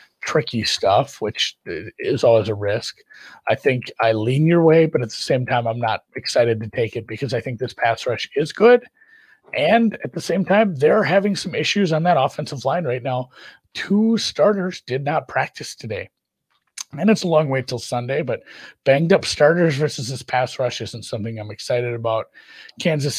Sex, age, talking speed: male, 30-49, 190 wpm